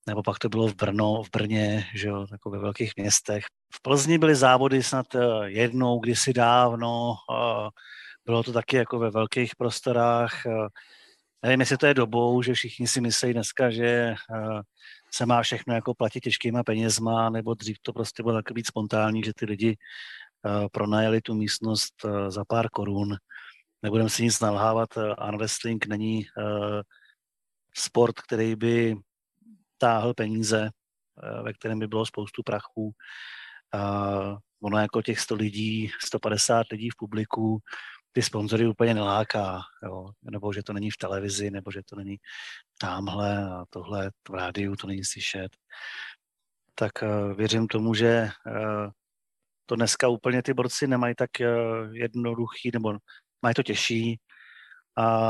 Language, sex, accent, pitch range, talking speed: Czech, male, native, 105-120 Hz, 140 wpm